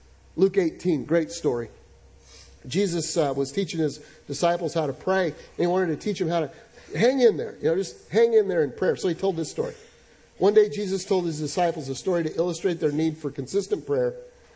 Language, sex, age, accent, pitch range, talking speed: English, male, 50-69, American, 155-200 Hz, 215 wpm